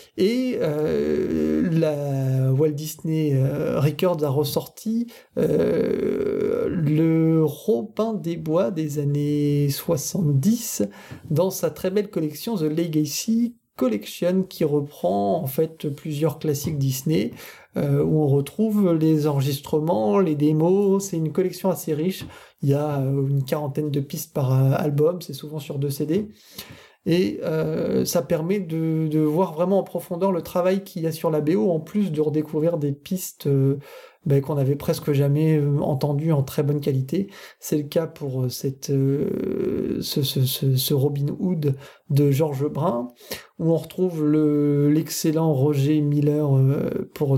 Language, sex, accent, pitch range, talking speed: French, male, French, 145-175 Hz, 145 wpm